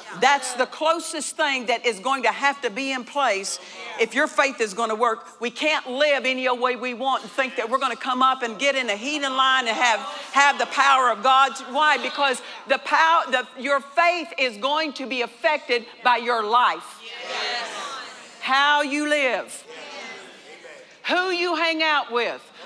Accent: American